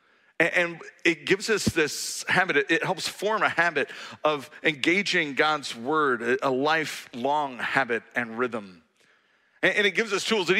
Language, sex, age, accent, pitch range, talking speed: English, male, 40-59, American, 140-210 Hz, 145 wpm